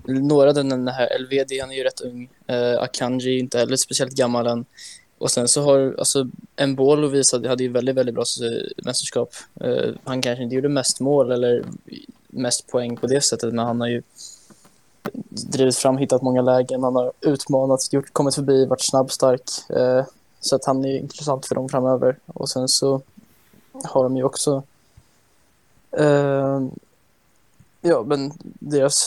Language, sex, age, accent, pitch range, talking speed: Swedish, male, 10-29, native, 130-140 Hz, 175 wpm